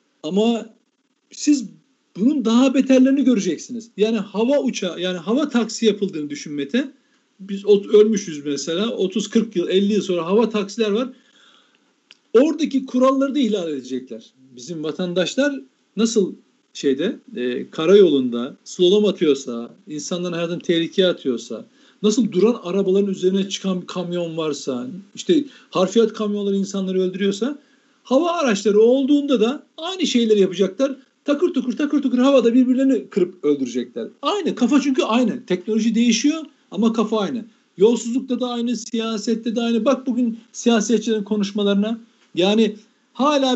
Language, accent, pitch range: Turkish, native, 190-260 Hz